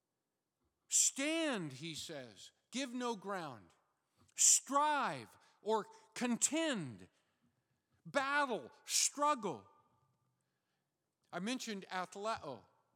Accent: American